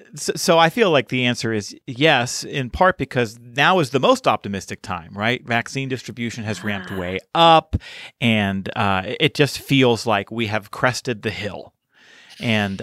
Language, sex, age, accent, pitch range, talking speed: English, male, 40-59, American, 105-130 Hz, 170 wpm